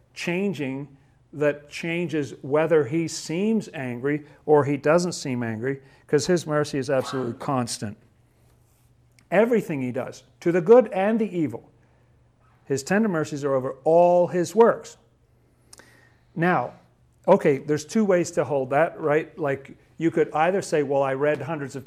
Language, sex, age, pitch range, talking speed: English, male, 50-69, 130-155 Hz, 150 wpm